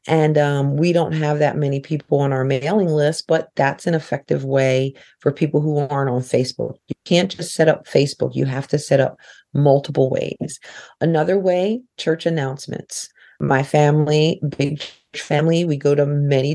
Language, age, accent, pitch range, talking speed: English, 40-59, American, 140-165 Hz, 175 wpm